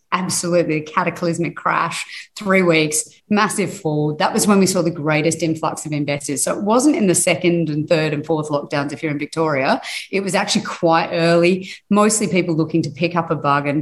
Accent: Australian